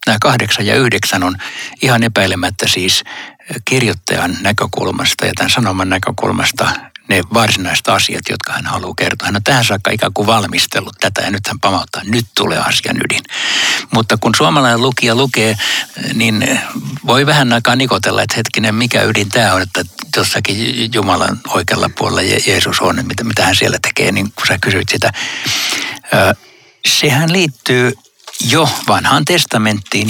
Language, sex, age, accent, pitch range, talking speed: Finnish, male, 60-79, native, 100-120 Hz, 150 wpm